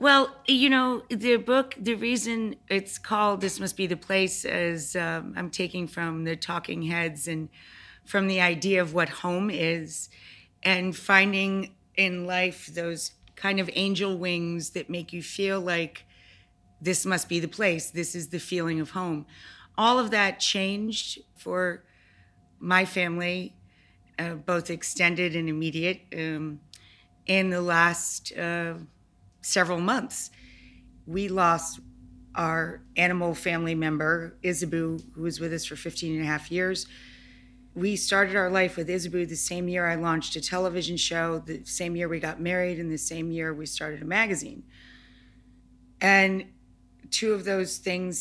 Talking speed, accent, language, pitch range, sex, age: 155 wpm, American, English, 160-185 Hz, female, 30-49